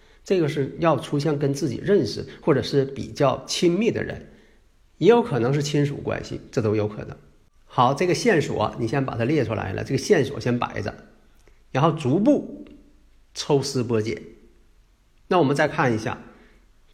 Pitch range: 120-160 Hz